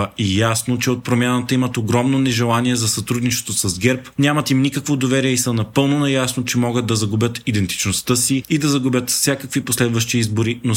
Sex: male